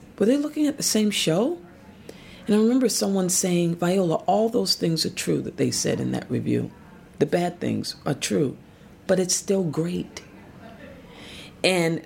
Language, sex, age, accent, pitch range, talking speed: English, female, 40-59, American, 130-185 Hz, 170 wpm